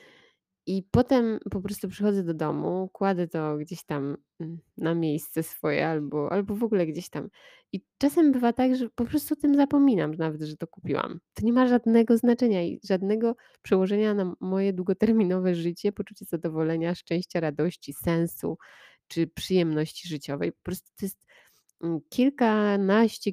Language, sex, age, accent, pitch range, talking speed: Polish, female, 20-39, native, 160-195 Hz, 150 wpm